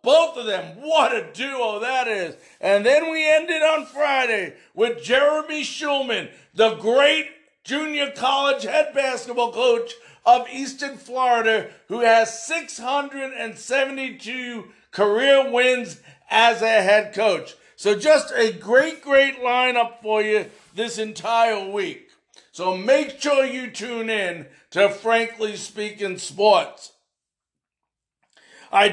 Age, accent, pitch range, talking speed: 50-69, American, 200-270 Hz, 120 wpm